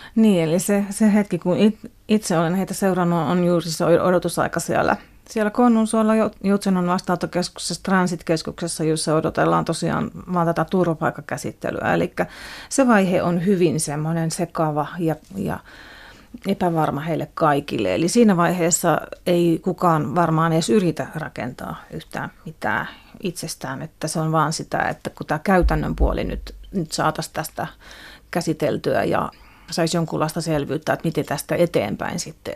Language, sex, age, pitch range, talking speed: Finnish, female, 30-49, 155-185 Hz, 140 wpm